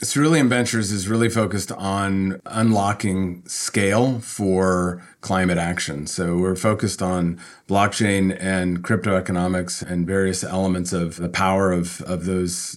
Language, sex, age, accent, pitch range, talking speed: English, male, 30-49, American, 90-100 Hz, 130 wpm